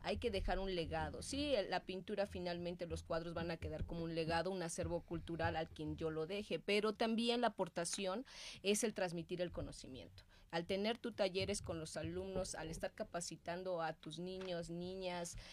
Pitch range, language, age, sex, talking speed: 170-210 Hz, Spanish, 30-49, female, 185 wpm